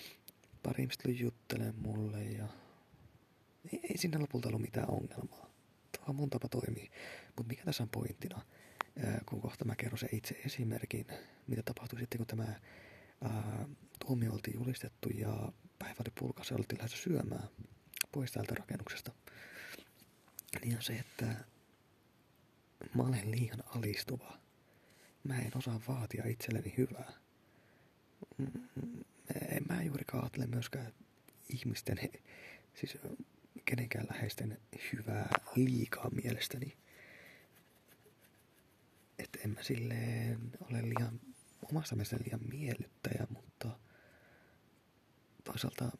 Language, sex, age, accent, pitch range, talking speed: Finnish, male, 30-49, native, 115-130 Hz, 110 wpm